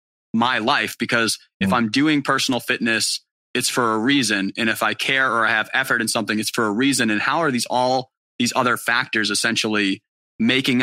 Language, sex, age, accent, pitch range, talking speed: English, male, 20-39, American, 110-135 Hz, 200 wpm